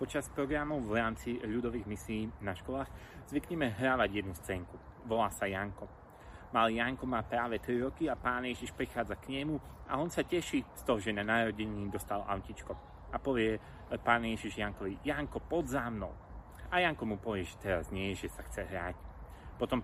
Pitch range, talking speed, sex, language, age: 100-130 Hz, 180 wpm, male, Slovak, 30-49